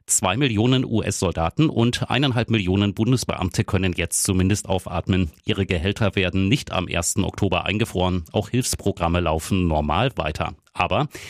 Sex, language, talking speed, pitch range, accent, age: male, German, 135 wpm, 90-110 Hz, German, 30-49